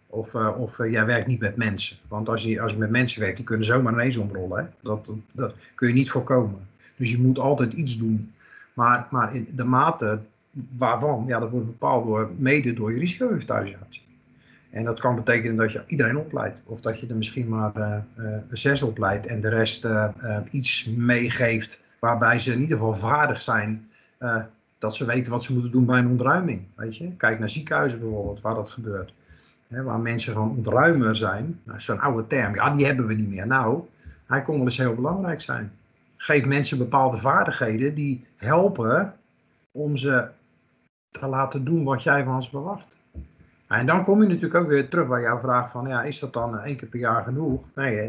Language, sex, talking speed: Dutch, male, 205 wpm